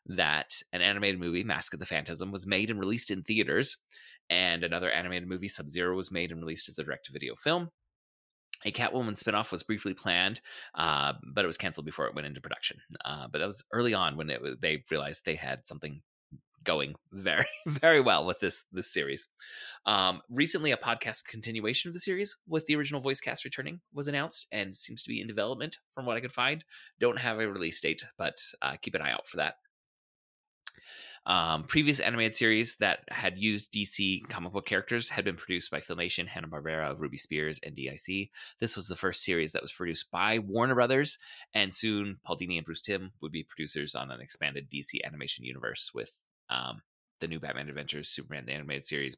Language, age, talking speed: English, 30-49, 200 wpm